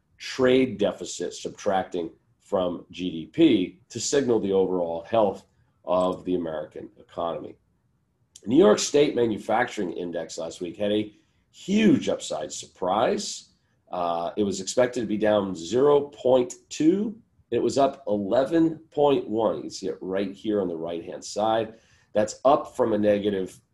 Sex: male